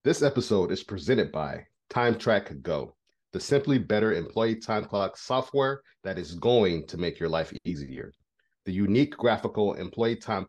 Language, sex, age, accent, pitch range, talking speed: English, male, 40-59, American, 95-130 Hz, 155 wpm